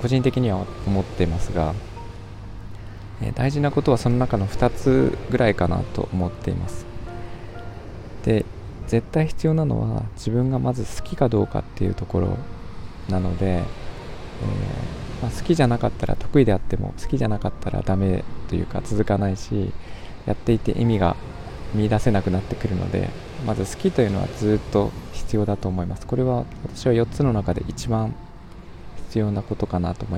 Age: 20-39